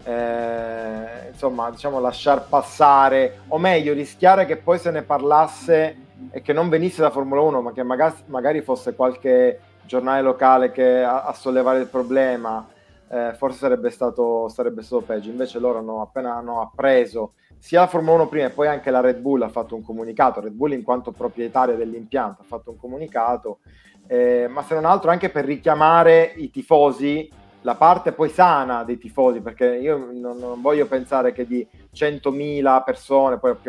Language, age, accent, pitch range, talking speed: Italian, 30-49, native, 120-145 Hz, 175 wpm